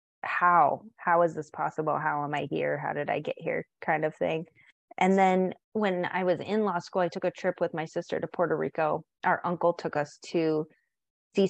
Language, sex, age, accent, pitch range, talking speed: English, female, 30-49, American, 155-180 Hz, 215 wpm